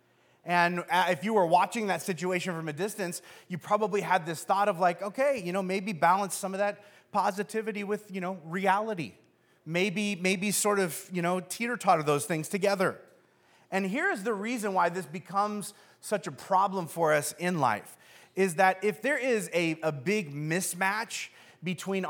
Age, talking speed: 30-49, 175 wpm